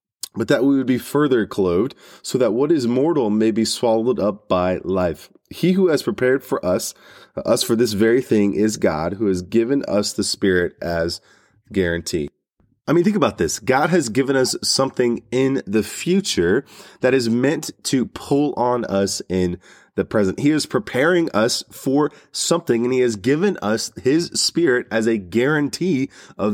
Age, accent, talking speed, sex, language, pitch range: 20-39, American, 180 wpm, male, English, 105-140 Hz